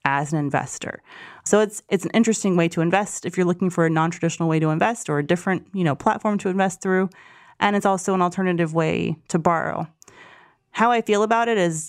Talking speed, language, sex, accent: 215 wpm, English, female, American